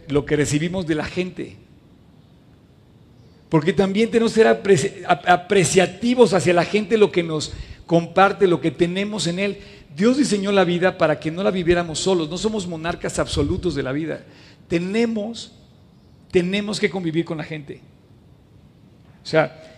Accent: Mexican